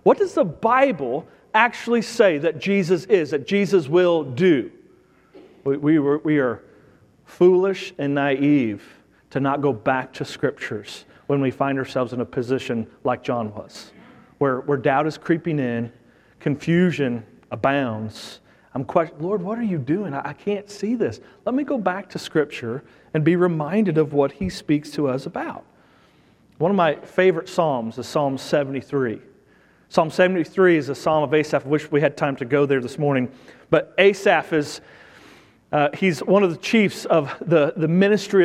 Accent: American